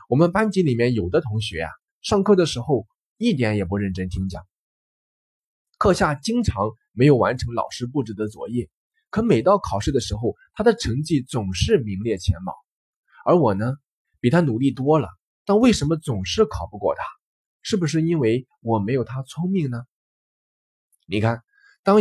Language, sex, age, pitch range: Chinese, male, 20-39, 95-160 Hz